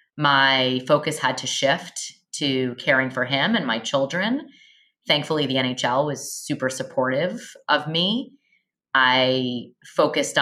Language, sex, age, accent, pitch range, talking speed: English, female, 20-39, American, 130-160 Hz, 125 wpm